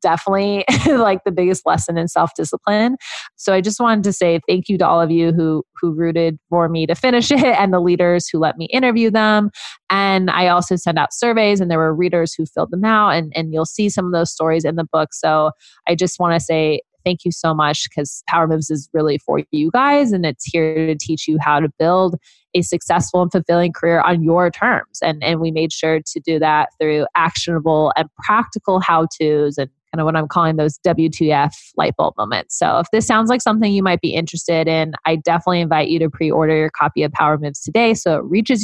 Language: English